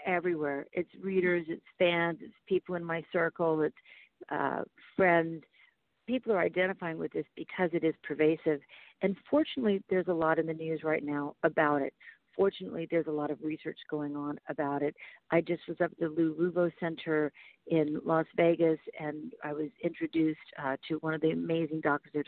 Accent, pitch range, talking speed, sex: American, 155-175 Hz, 180 wpm, female